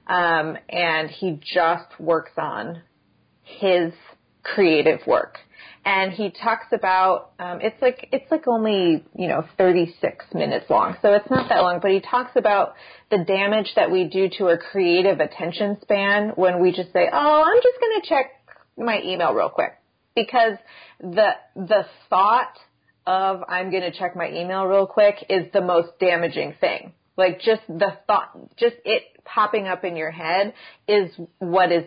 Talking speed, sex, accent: 170 wpm, female, American